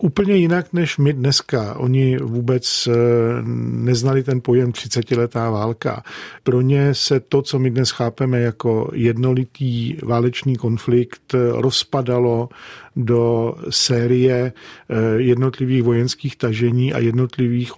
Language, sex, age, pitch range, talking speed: Czech, male, 50-69, 115-130 Hz, 110 wpm